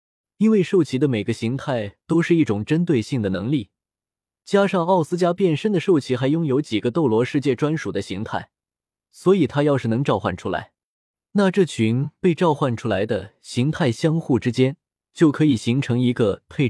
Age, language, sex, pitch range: 20-39, Chinese, male, 110-165 Hz